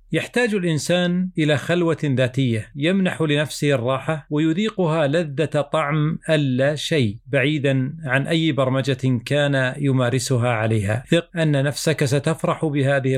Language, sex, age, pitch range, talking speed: Arabic, male, 50-69, 135-160 Hz, 115 wpm